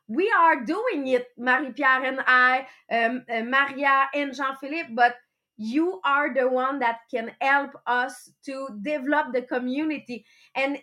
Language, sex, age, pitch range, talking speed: English, female, 30-49, 255-315 Hz, 155 wpm